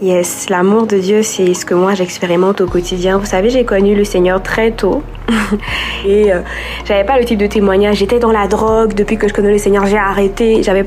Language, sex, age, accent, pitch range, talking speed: French, female, 20-39, French, 185-215 Hz, 230 wpm